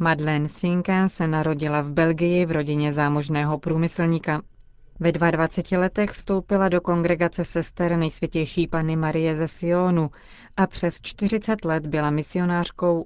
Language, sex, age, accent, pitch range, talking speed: Czech, female, 30-49, native, 155-180 Hz, 130 wpm